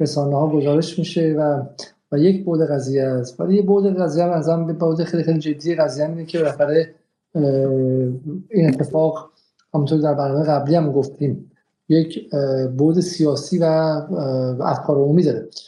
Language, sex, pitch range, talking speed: Persian, male, 140-165 Hz, 150 wpm